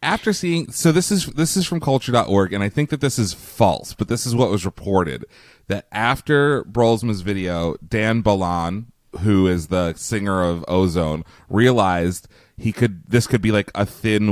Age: 30-49